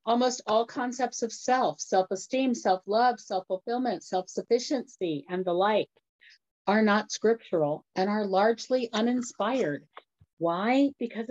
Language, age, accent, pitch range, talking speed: English, 50-69, American, 165-200 Hz, 110 wpm